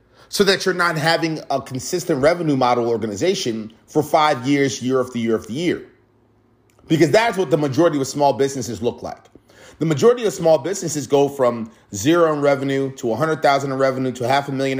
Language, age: English, 30-49